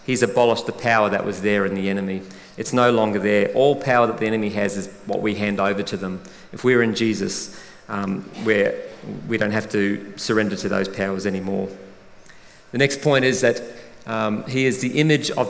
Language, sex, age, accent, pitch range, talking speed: English, male, 40-59, Australian, 105-120 Hz, 200 wpm